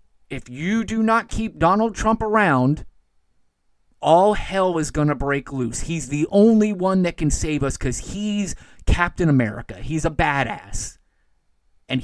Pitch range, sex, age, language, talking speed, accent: 120-180 Hz, male, 30-49, English, 155 wpm, American